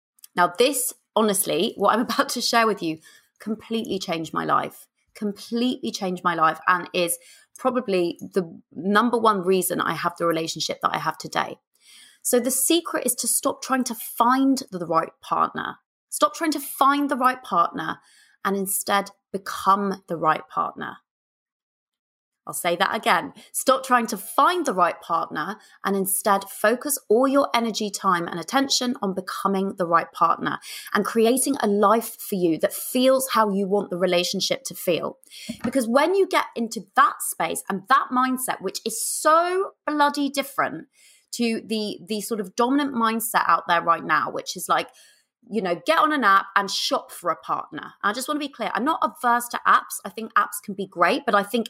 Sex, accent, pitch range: female, British, 195-255 Hz